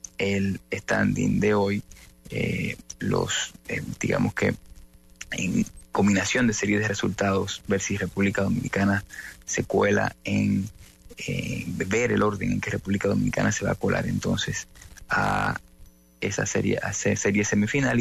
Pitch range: 100-110 Hz